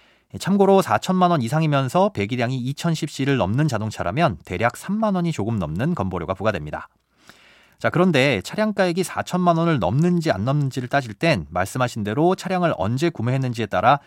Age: 30-49